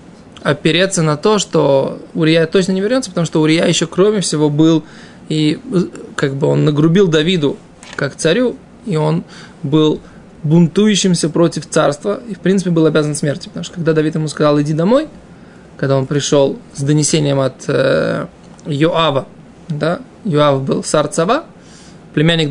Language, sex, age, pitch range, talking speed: Russian, male, 20-39, 145-175 Hz, 150 wpm